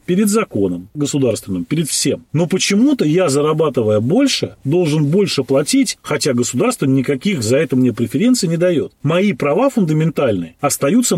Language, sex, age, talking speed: Russian, male, 30-49, 140 wpm